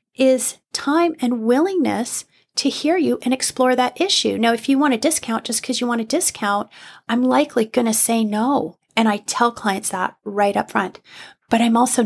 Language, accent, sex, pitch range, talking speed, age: English, American, female, 210-260 Hz, 200 wpm, 30-49